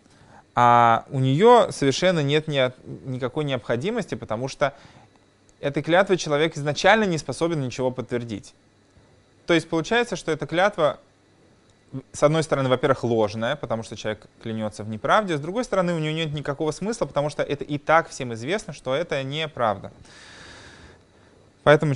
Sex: male